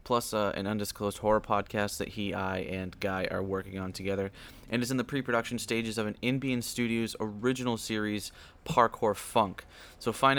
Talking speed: 180 wpm